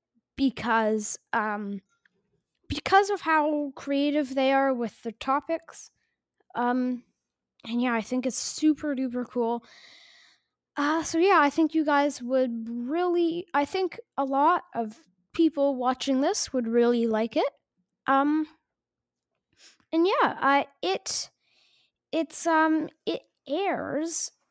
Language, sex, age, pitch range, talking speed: English, female, 10-29, 245-335 Hz, 125 wpm